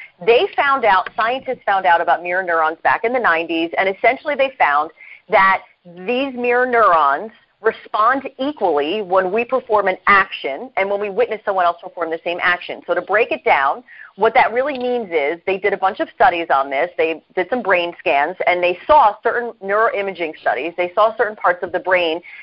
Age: 30-49